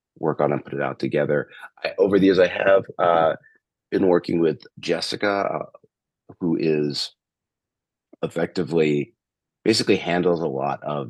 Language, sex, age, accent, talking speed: English, male, 30-49, American, 145 wpm